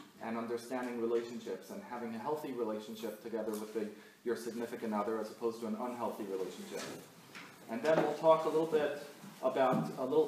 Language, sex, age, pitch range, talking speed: English, male, 30-49, 115-140 Hz, 170 wpm